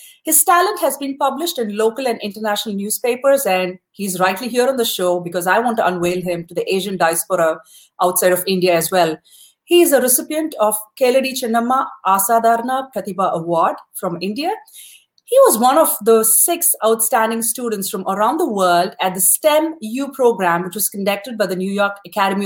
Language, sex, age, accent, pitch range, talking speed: English, female, 30-49, Indian, 190-255 Hz, 180 wpm